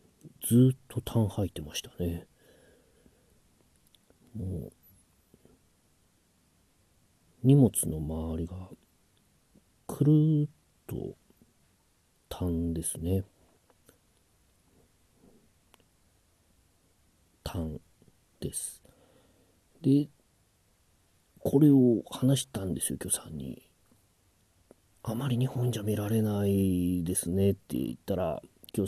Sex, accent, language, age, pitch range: male, native, Japanese, 40-59, 85-125 Hz